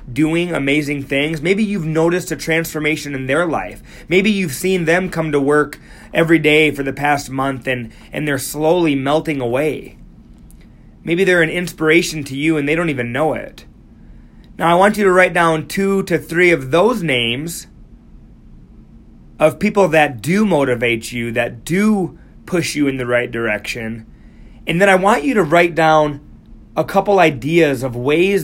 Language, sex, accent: English, male, American